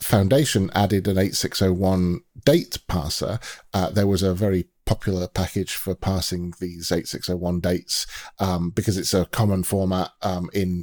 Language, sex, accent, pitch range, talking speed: English, male, British, 90-110 Hz, 145 wpm